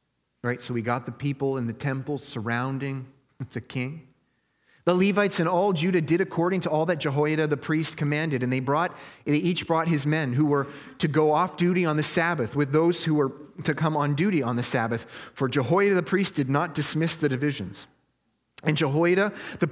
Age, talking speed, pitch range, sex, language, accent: 30-49, 200 wpm, 130-165 Hz, male, English, American